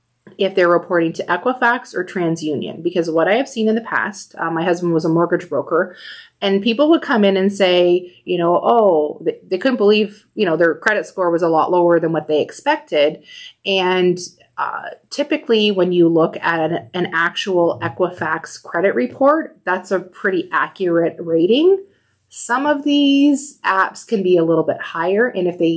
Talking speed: 185 wpm